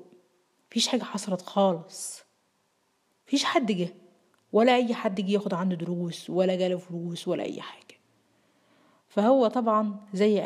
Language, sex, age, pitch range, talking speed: Arabic, female, 30-49, 190-250 Hz, 130 wpm